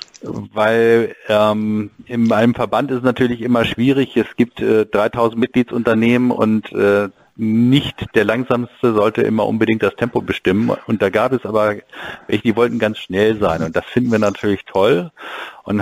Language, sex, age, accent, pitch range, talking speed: German, male, 50-69, German, 105-125 Hz, 165 wpm